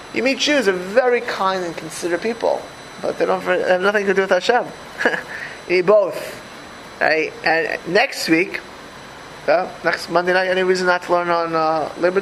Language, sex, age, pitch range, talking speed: English, male, 20-39, 175-235 Hz, 185 wpm